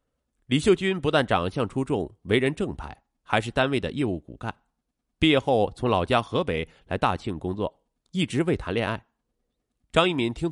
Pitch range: 90-155 Hz